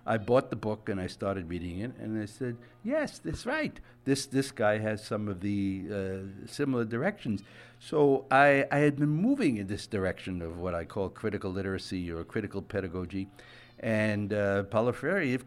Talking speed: 185 wpm